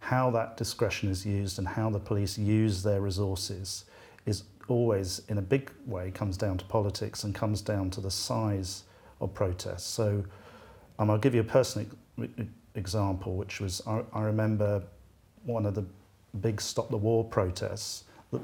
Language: English